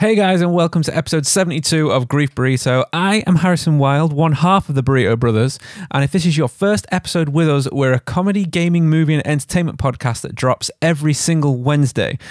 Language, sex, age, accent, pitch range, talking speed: English, male, 20-39, British, 125-165 Hz, 205 wpm